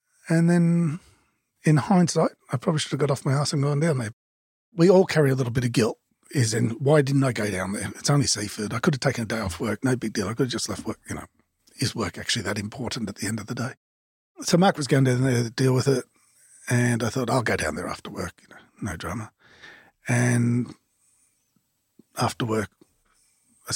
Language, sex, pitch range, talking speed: English, male, 120-165 Hz, 230 wpm